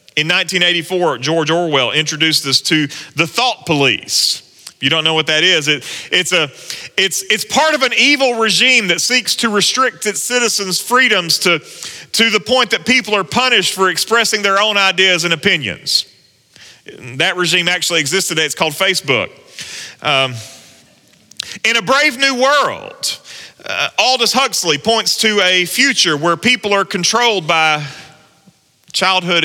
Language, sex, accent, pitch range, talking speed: English, male, American, 130-210 Hz, 155 wpm